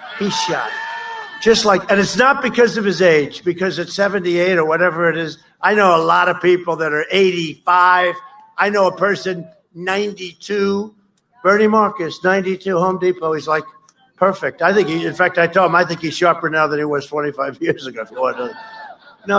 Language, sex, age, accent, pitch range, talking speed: English, male, 50-69, American, 165-205 Hz, 185 wpm